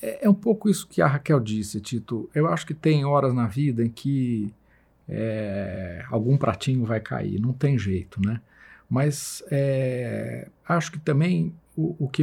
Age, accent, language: 50-69, Brazilian, Portuguese